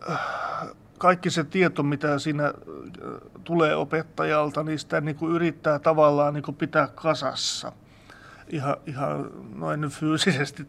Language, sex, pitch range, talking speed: Finnish, male, 145-160 Hz, 95 wpm